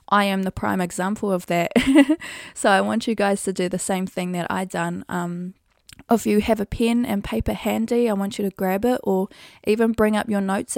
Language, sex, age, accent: English, female, 20-39, Australian